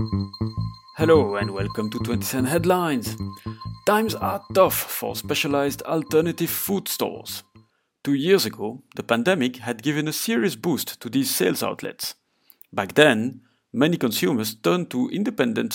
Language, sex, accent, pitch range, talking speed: English, male, French, 115-170 Hz, 135 wpm